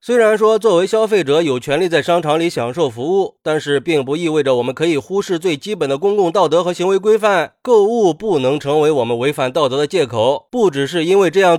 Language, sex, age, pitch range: Chinese, male, 20-39, 140-190 Hz